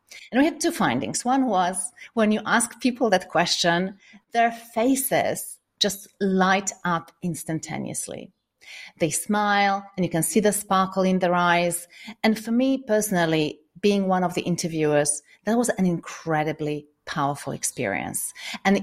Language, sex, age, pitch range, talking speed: English, female, 40-59, 165-210 Hz, 145 wpm